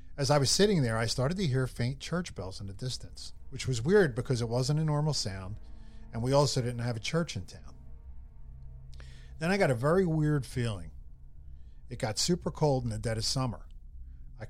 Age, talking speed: 40-59, 205 wpm